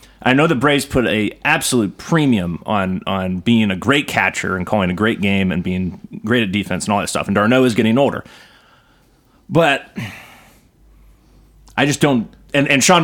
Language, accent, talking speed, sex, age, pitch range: English, American, 190 wpm, male, 30-49, 90-120 Hz